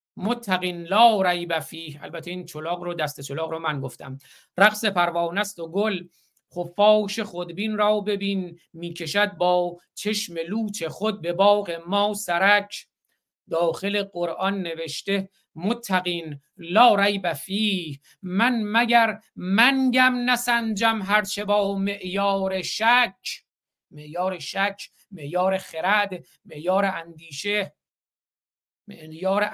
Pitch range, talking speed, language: 175-210 Hz, 105 wpm, Persian